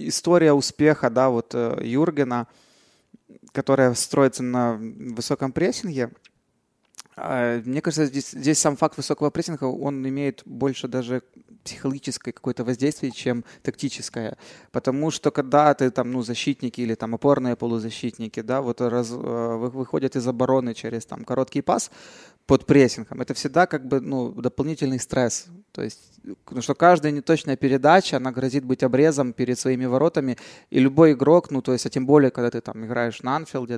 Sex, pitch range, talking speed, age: male, 120-145 Hz, 155 wpm, 20-39